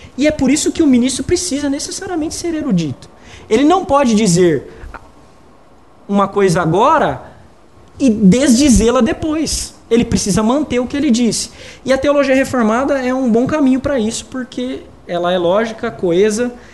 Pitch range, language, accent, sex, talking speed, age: 175-240 Hz, Portuguese, Brazilian, male, 155 wpm, 20-39